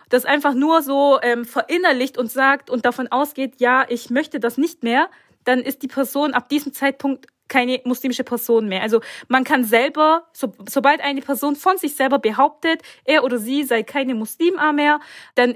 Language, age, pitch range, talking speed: German, 20-39, 230-285 Hz, 185 wpm